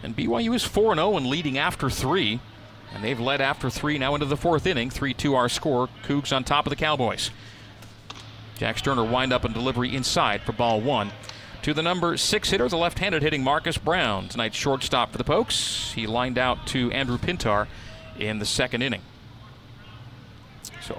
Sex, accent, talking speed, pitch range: male, American, 185 wpm, 115-135 Hz